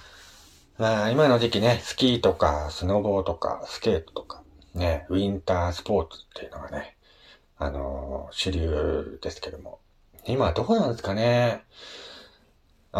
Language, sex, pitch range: Japanese, male, 85-145 Hz